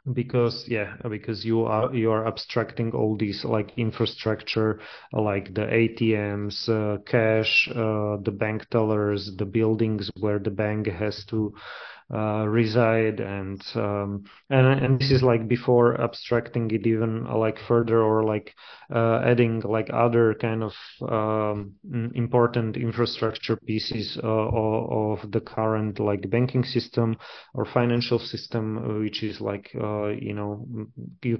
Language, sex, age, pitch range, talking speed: English, male, 30-49, 105-120 Hz, 140 wpm